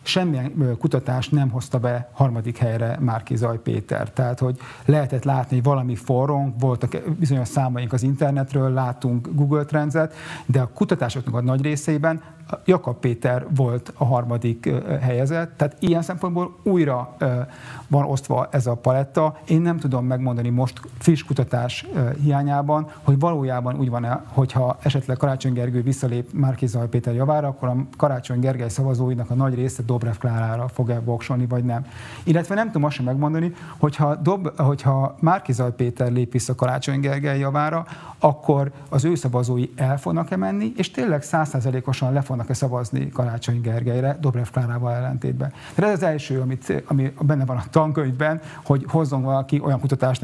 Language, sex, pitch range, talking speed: Hungarian, male, 125-150 Hz, 155 wpm